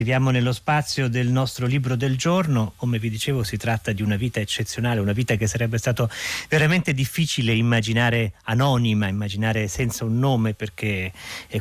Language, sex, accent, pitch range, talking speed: Italian, male, native, 110-135 Hz, 165 wpm